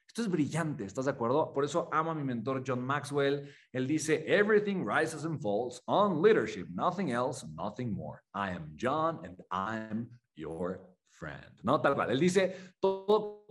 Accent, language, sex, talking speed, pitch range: Mexican, Spanish, male, 180 wpm, 120-160 Hz